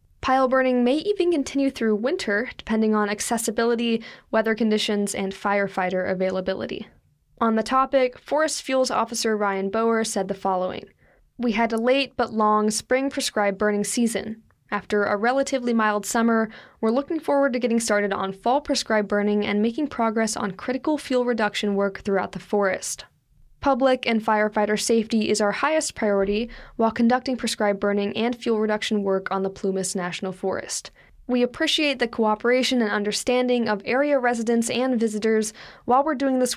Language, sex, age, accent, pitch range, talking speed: English, female, 10-29, American, 205-245 Hz, 160 wpm